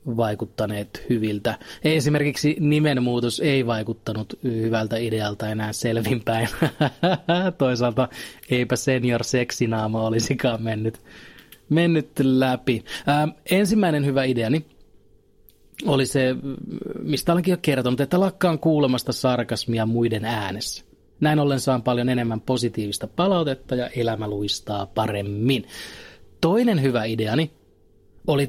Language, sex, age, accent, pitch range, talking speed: Finnish, male, 30-49, native, 115-155 Hz, 100 wpm